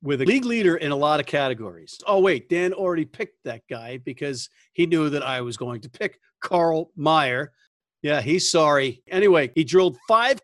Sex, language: male, English